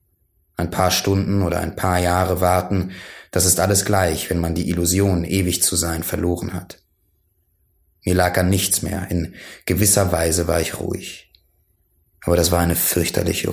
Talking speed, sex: 165 wpm, male